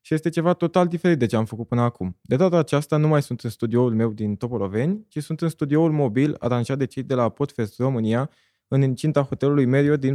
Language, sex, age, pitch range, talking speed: Romanian, male, 20-39, 120-150 Hz, 230 wpm